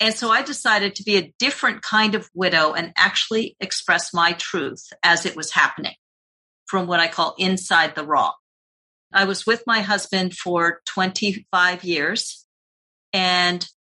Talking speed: 155 wpm